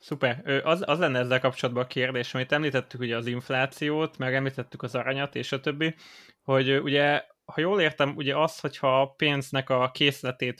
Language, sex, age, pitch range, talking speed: Hungarian, male, 20-39, 130-145 Hz, 175 wpm